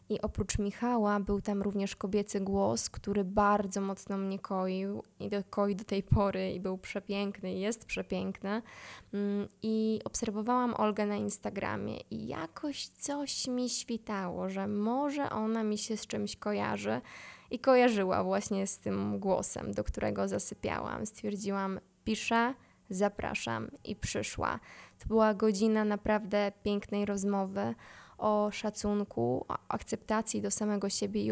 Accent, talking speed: native, 130 wpm